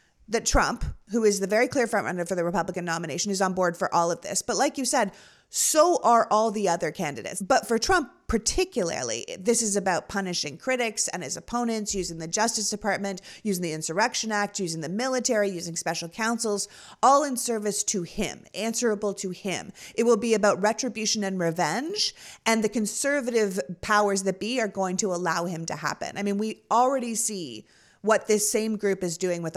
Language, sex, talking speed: English, female, 195 wpm